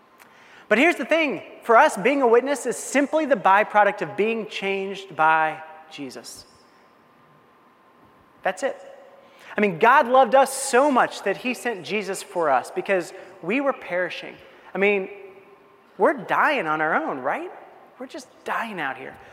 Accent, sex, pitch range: American, male, 180-250 Hz